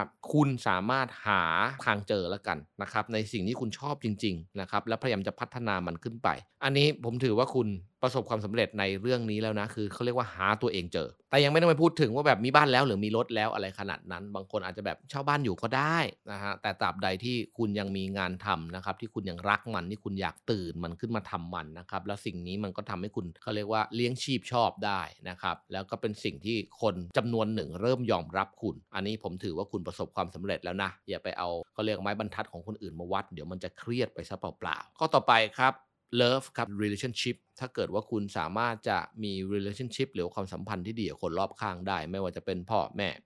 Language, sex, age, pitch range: Thai, male, 30-49, 95-120 Hz